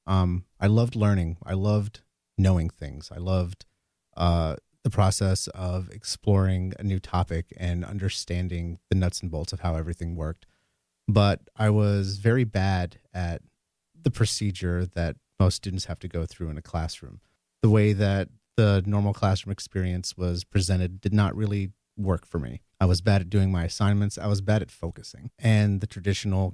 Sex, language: male, English